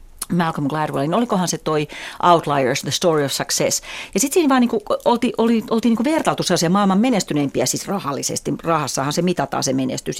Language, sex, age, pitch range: Finnish, female, 40-59, 145-230 Hz